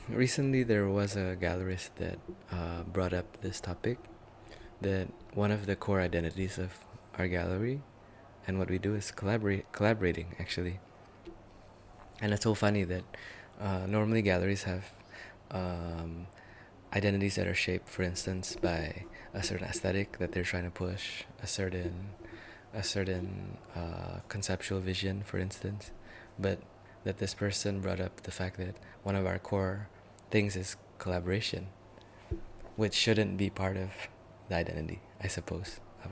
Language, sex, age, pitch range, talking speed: English, male, 20-39, 95-105 Hz, 145 wpm